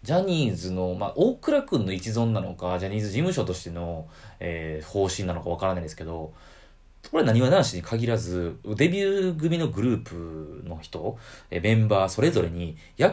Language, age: Japanese, 30-49